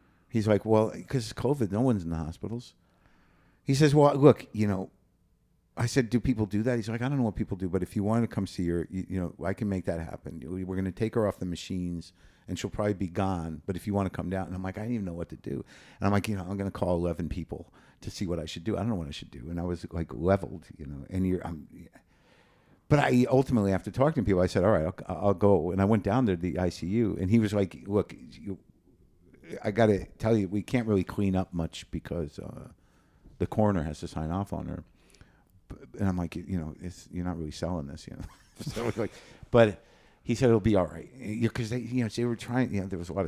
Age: 50-69